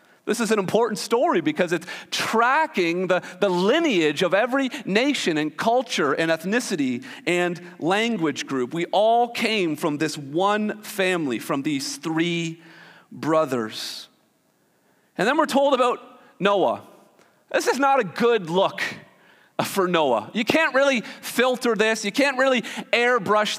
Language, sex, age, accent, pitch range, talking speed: English, male, 40-59, American, 175-250 Hz, 140 wpm